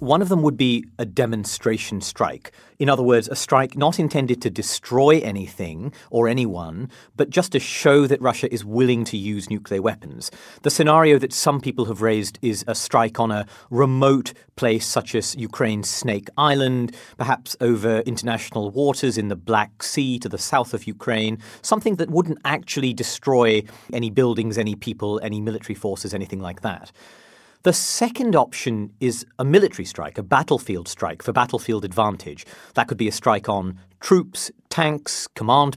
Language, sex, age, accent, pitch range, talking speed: English, male, 40-59, British, 110-145 Hz, 170 wpm